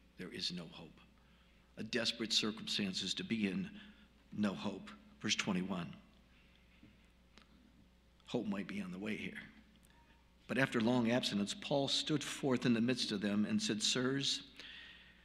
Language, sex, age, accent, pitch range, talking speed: English, male, 50-69, American, 95-150 Hz, 140 wpm